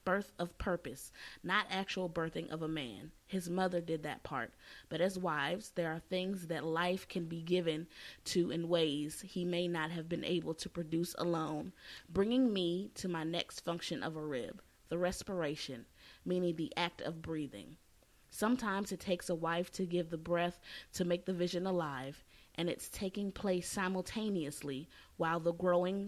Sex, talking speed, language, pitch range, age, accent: female, 175 wpm, English, 165-190 Hz, 20-39, American